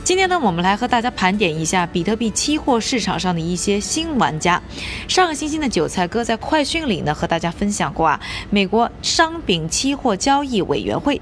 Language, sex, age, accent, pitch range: Chinese, female, 20-39, native, 180-260 Hz